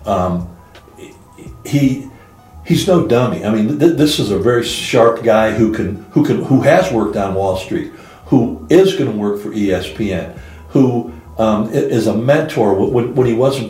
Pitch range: 100-115 Hz